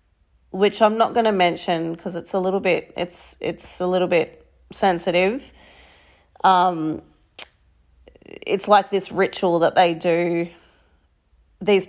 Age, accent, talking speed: 30-49, Australian, 130 wpm